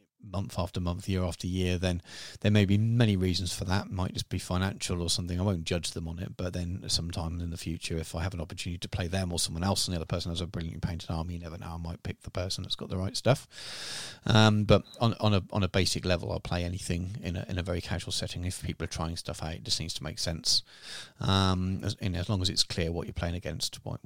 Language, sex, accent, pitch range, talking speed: English, male, British, 85-105 Hz, 275 wpm